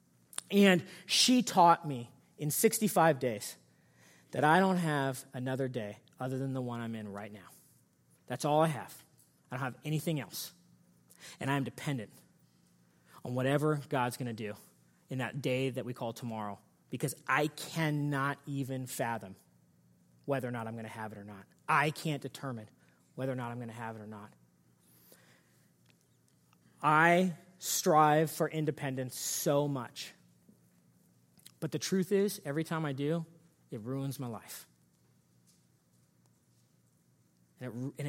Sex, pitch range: male, 105-150 Hz